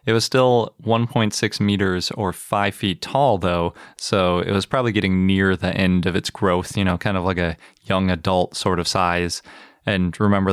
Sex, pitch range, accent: male, 90-110 Hz, American